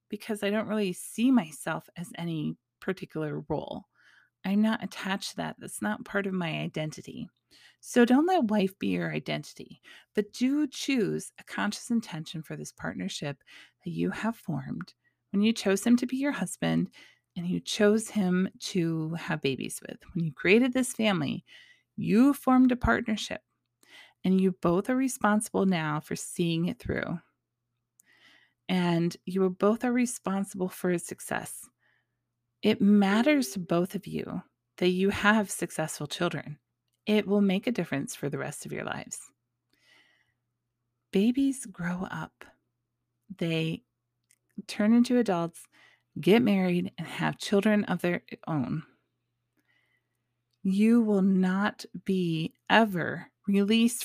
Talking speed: 140 wpm